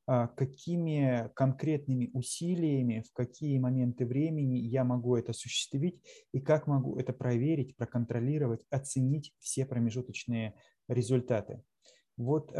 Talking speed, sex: 105 wpm, male